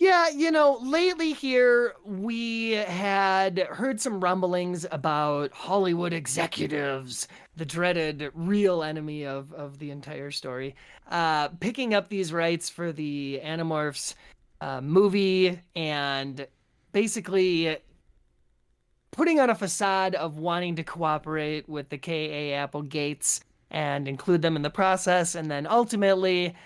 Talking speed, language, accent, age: 125 wpm, English, American, 30-49